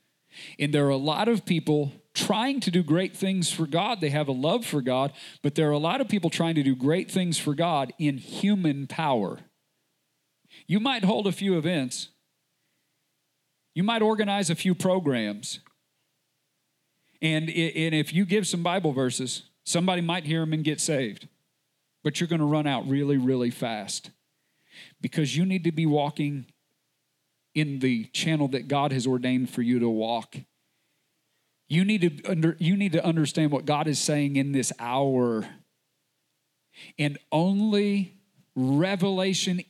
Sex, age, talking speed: male, 40-59, 165 wpm